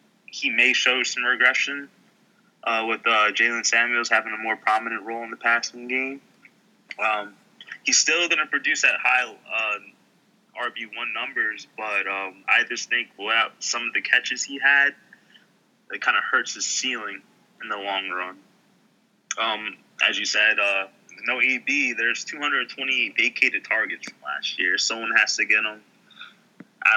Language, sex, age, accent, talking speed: English, male, 20-39, American, 160 wpm